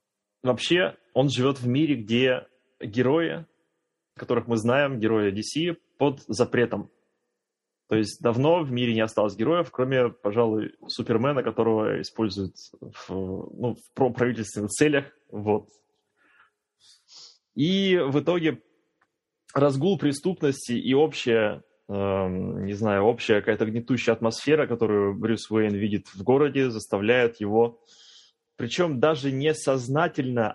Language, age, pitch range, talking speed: Russian, 20-39, 110-140 Hz, 115 wpm